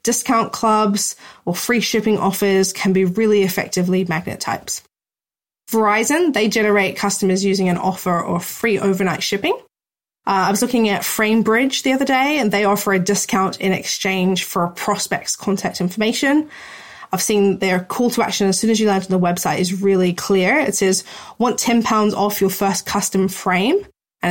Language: English